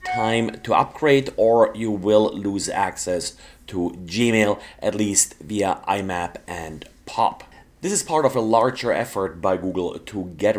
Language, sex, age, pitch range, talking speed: English, male, 30-49, 105-125 Hz, 155 wpm